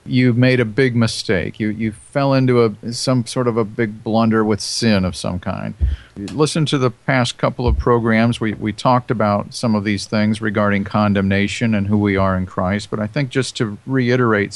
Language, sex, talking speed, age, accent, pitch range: English, male, 205 wpm, 50-69, American, 105-130 Hz